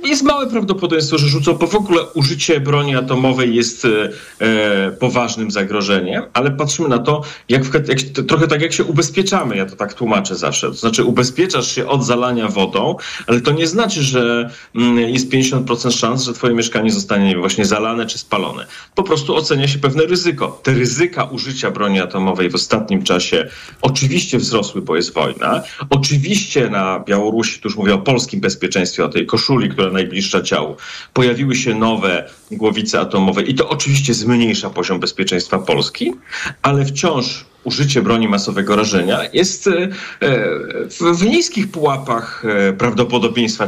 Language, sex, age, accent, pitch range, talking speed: Polish, male, 40-59, native, 120-165 Hz, 155 wpm